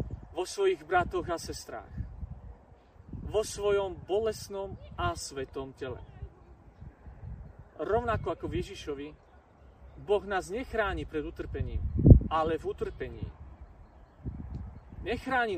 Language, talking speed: Slovak, 90 wpm